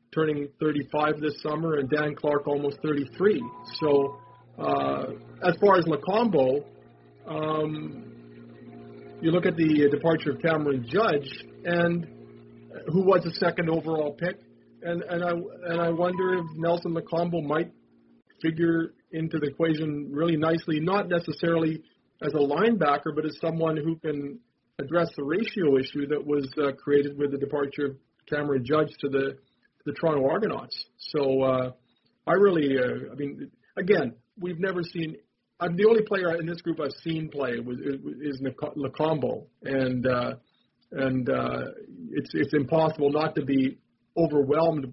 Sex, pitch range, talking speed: male, 140-165 Hz, 150 wpm